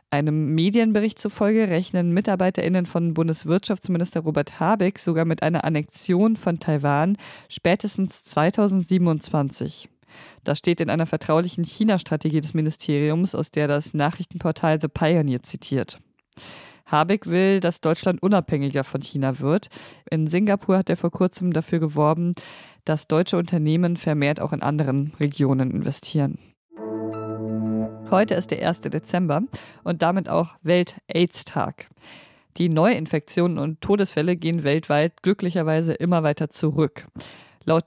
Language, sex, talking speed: German, female, 120 wpm